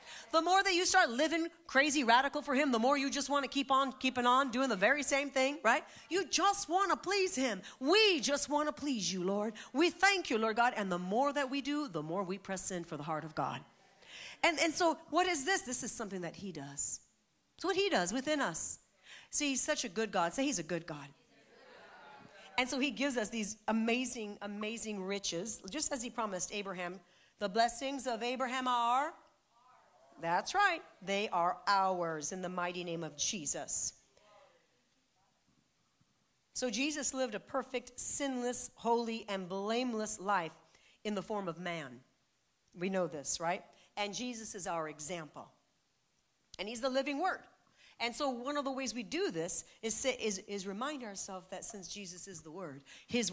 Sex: female